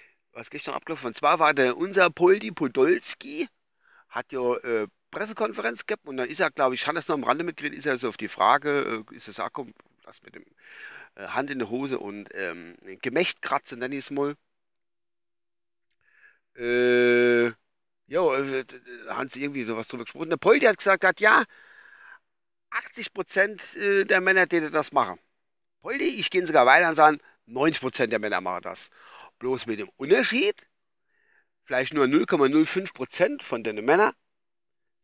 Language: German